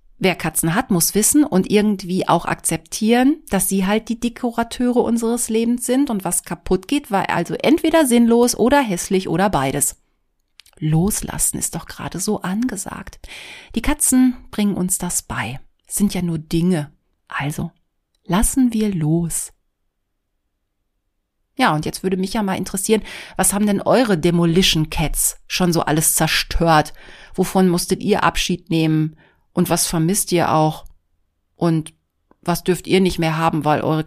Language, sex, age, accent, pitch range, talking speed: German, female, 30-49, German, 160-210 Hz, 150 wpm